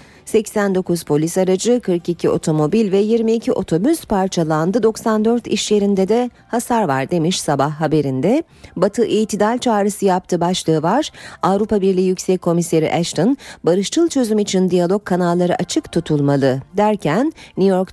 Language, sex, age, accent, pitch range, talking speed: Turkish, female, 40-59, native, 165-225 Hz, 130 wpm